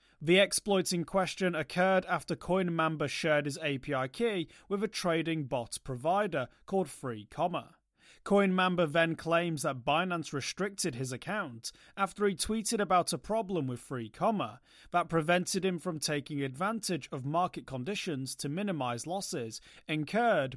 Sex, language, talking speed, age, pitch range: male, English, 135 wpm, 30-49, 145-185 Hz